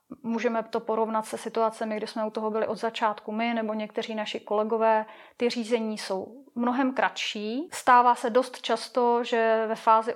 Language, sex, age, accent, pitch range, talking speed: Czech, female, 30-49, native, 215-250 Hz, 170 wpm